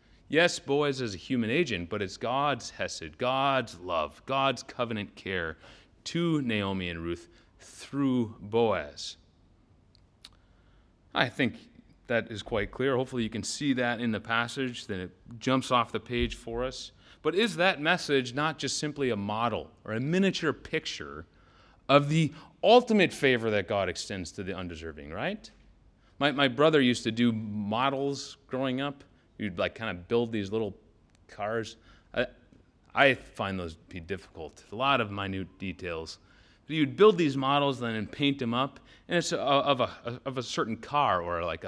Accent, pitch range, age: American, 100-140 Hz, 30-49